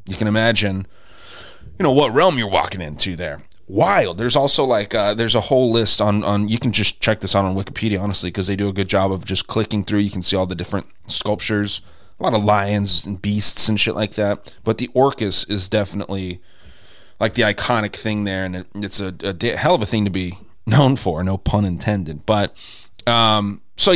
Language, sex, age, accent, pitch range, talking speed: English, male, 30-49, American, 95-120 Hz, 215 wpm